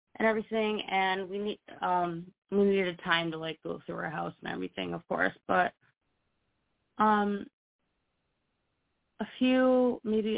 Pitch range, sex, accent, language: 170-215 Hz, female, American, English